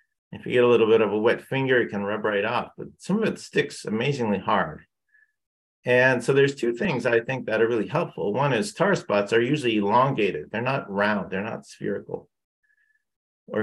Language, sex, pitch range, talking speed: English, male, 110-145 Hz, 205 wpm